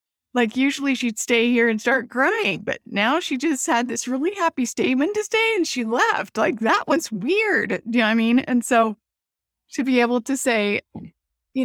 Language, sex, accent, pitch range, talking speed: English, female, American, 200-265 Hz, 205 wpm